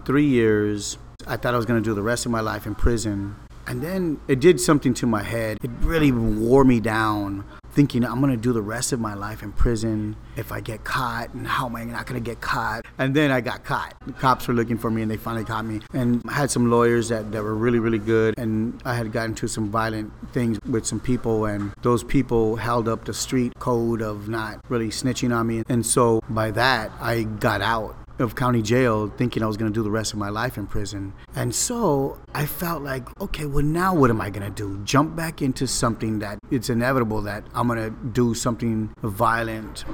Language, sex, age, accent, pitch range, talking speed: English, male, 30-49, American, 110-125 Hz, 235 wpm